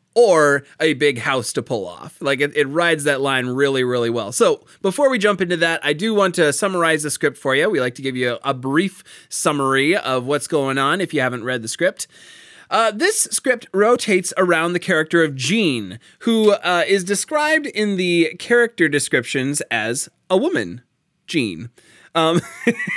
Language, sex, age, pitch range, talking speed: English, male, 30-49, 140-200 Hz, 190 wpm